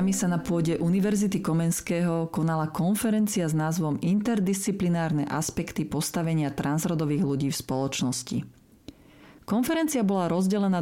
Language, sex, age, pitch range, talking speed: Slovak, female, 40-59, 155-195 Hz, 105 wpm